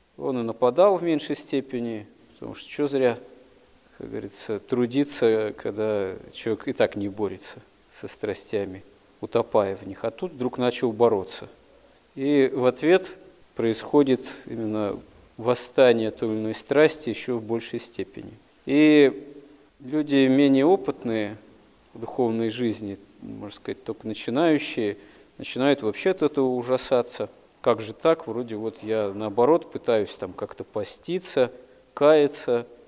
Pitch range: 110-145 Hz